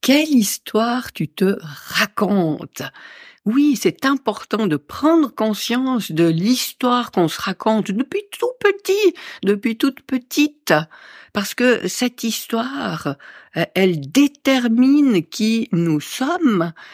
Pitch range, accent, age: 175-260 Hz, French, 50-69